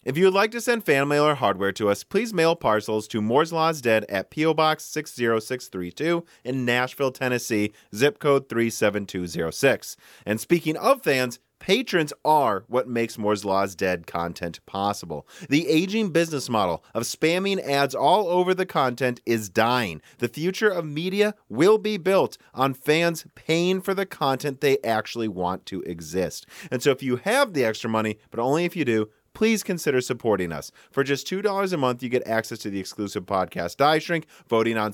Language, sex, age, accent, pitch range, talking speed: English, male, 30-49, American, 105-155 Hz, 180 wpm